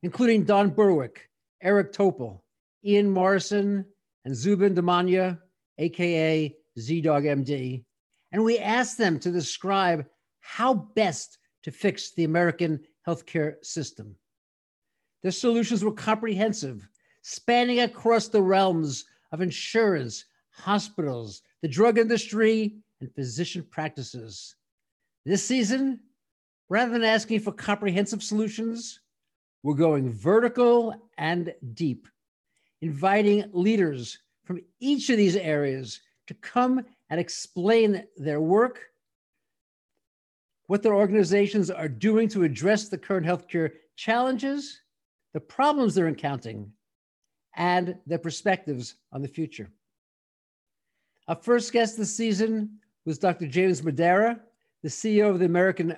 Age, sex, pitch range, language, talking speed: 50-69, male, 160-220 Hz, English, 115 wpm